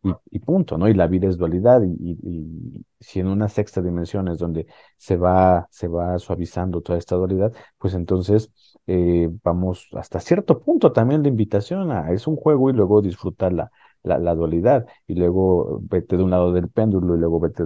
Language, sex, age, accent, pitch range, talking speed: Spanish, male, 40-59, Mexican, 85-105 Hz, 200 wpm